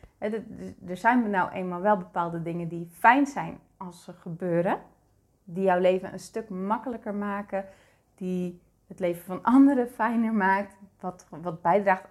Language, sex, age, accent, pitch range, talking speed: Dutch, female, 30-49, Dutch, 180-235 Hz, 150 wpm